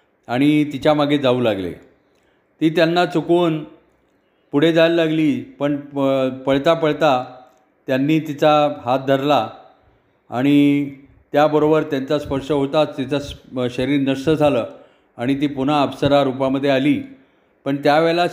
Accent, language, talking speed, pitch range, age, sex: native, Marathi, 115 wpm, 140-155 Hz, 40-59, male